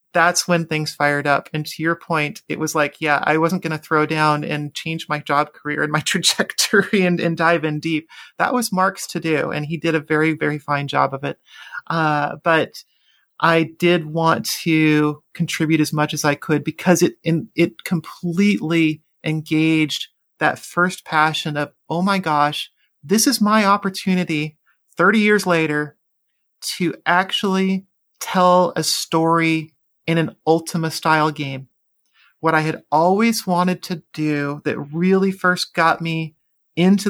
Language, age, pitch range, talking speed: English, 30-49, 150-175 Hz, 165 wpm